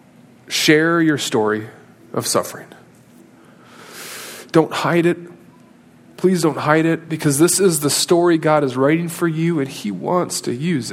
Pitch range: 140-180 Hz